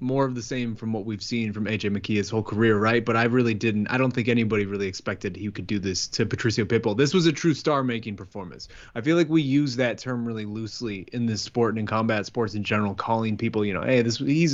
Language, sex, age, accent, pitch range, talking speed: English, male, 20-39, American, 110-140 Hz, 265 wpm